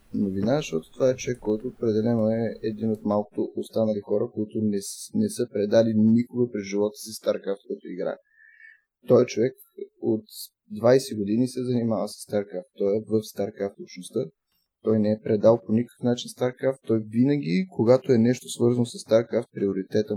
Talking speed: 165 wpm